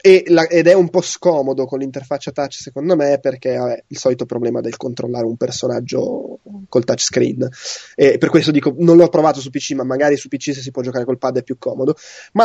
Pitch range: 140-175 Hz